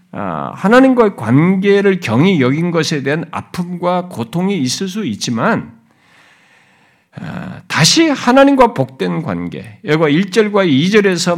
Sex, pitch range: male, 165-260 Hz